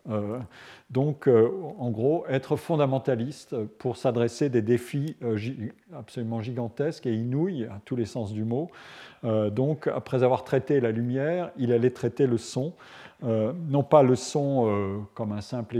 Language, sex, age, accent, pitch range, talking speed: French, male, 50-69, French, 115-140 Hz, 165 wpm